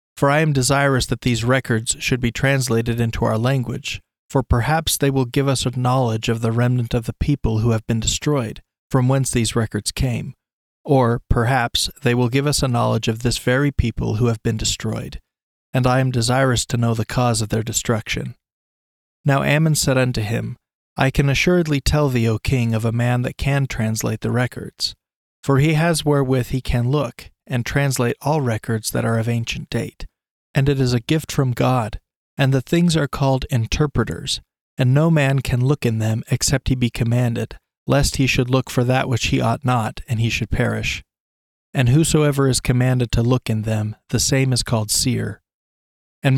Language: English